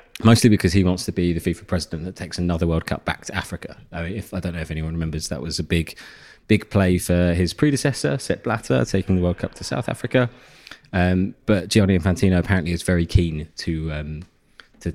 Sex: male